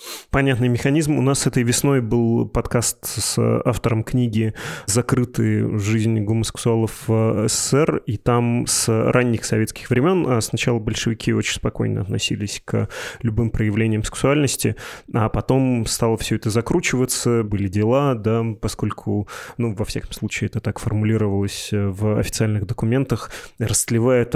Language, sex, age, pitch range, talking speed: Russian, male, 20-39, 110-130 Hz, 125 wpm